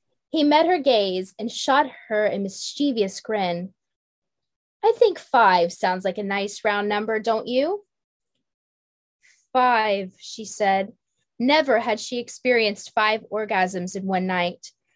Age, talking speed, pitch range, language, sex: 20-39, 130 wpm, 180-255 Hz, English, female